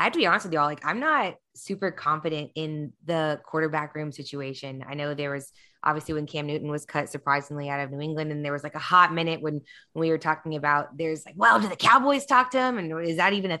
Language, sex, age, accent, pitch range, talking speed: English, female, 20-39, American, 170-230 Hz, 260 wpm